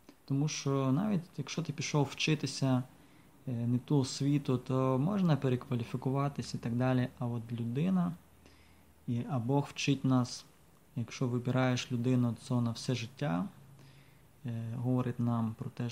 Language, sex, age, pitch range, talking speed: English, male, 20-39, 120-140 Hz, 130 wpm